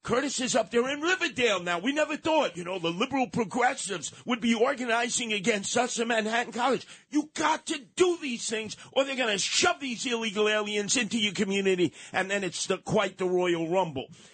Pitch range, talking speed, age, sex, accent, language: 185-245 Hz, 200 wpm, 50-69, male, American, English